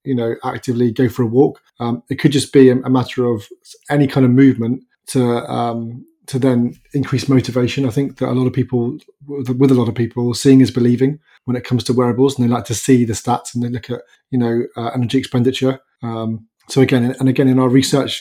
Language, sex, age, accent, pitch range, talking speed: English, male, 30-49, British, 115-130 Hz, 230 wpm